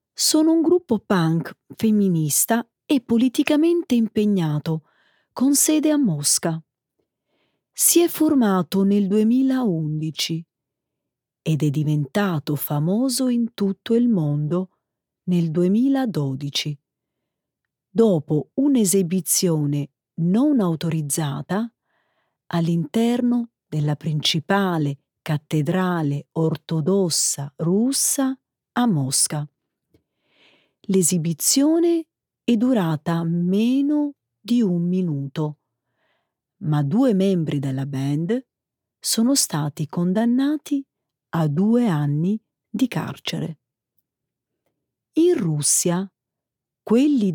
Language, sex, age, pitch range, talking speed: Italian, female, 40-59, 150-235 Hz, 80 wpm